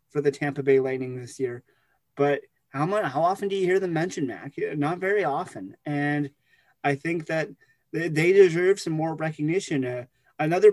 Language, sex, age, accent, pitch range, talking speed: English, male, 30-49, American, 135-160 Hz, 175 wpm